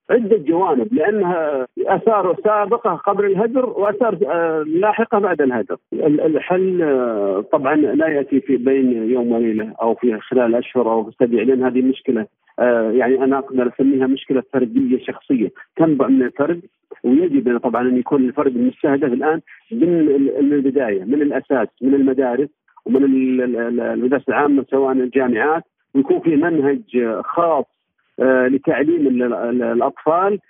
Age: 50-69